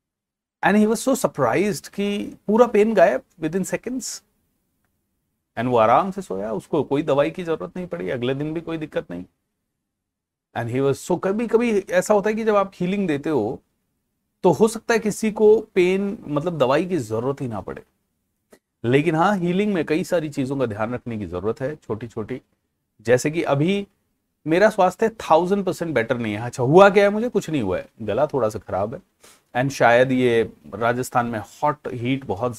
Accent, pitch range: native, 110-175 Hz